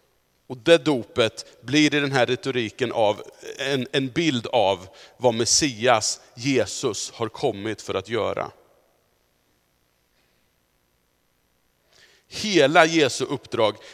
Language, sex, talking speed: Swedish, male, 100 wpm